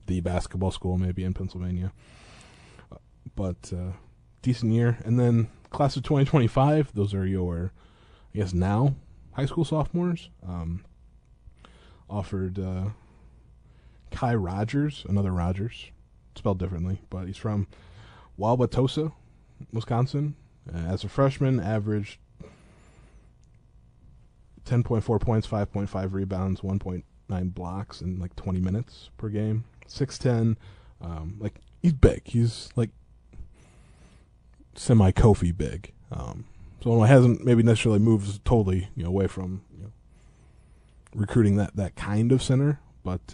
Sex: male